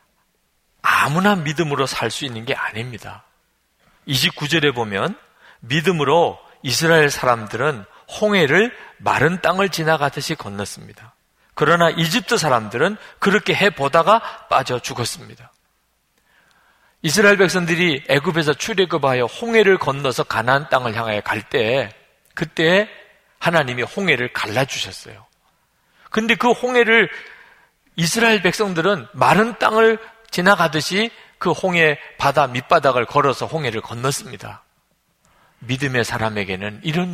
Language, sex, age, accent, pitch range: Korean, male, 40-59, native, 130-195 Hz